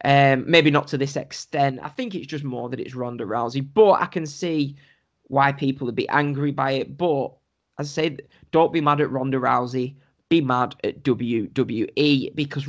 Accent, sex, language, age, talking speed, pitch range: British, male, English, 10-29, 195 wpm, 130-155 Hz